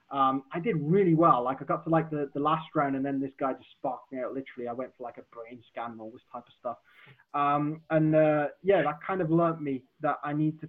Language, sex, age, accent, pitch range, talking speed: English, male, 20-39, British, 140-165 Hz, 270 wpm